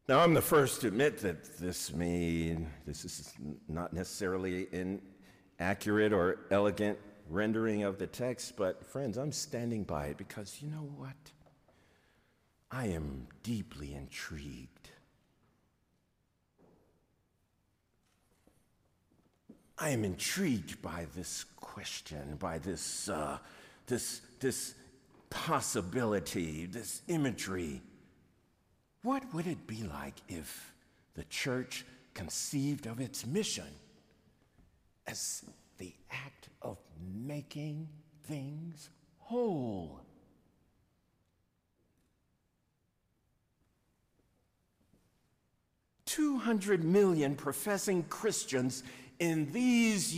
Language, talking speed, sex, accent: English, 90 wpm, male, American